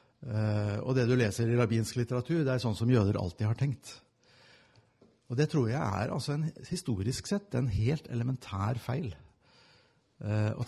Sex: male